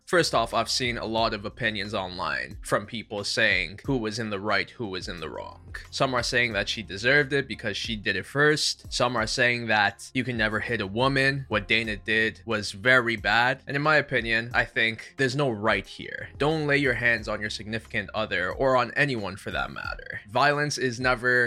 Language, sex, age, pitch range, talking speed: English, male, 20-39, 110-130 Hz, 215 wpm